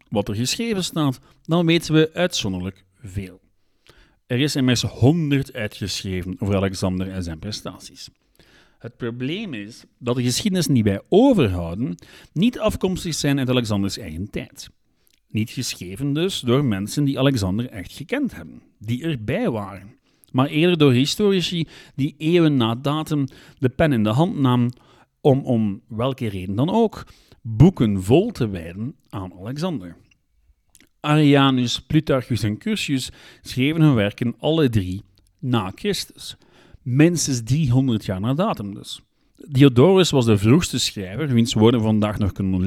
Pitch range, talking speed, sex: 105-150 Hz, 140 wpm, male